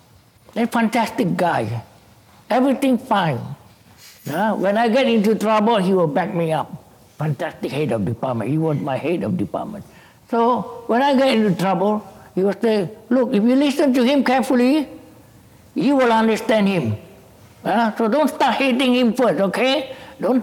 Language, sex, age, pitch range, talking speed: English, male, 60-79, 165-260 Hz, 160 wpm